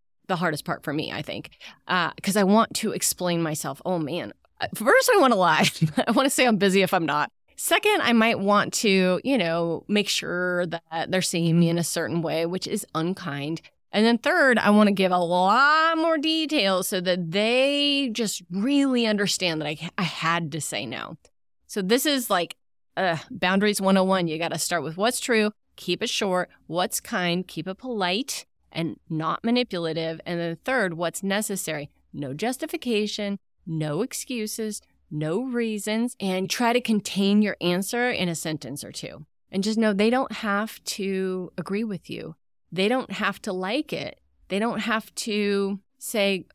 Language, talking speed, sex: English, 185 wpm, female